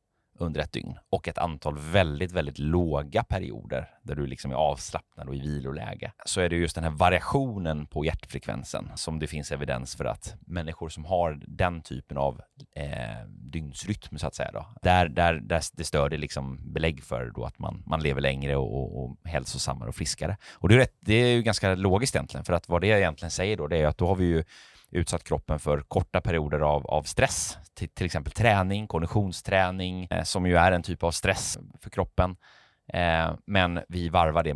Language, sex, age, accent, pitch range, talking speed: Swedish, male, 30-49, native, 75-90 Hz, 200 wpm